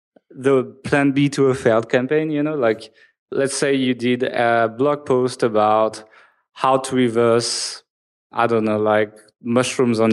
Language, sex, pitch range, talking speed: English, male, 115-135 Hz, 160 wpm